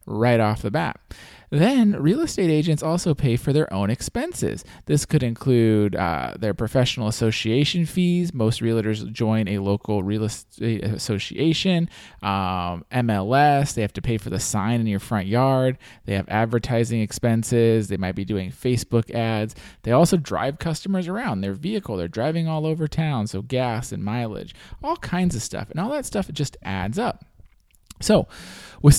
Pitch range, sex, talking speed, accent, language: 105-145 Hz, male, 170 wpm, American, English